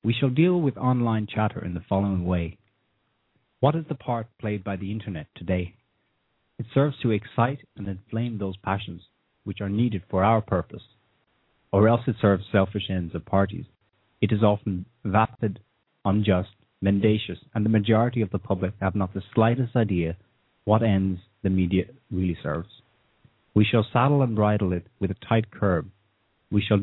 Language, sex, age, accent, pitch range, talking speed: English, male, 30-49, Norwegian, 95-115 Hz, 170 wpm